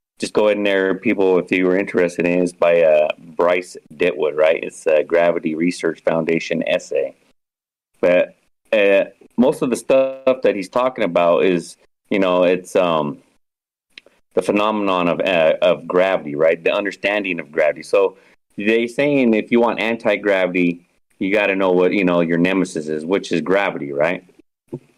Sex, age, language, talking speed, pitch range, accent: male, 30-49, English, 175 wpm, 90-120 Hz, American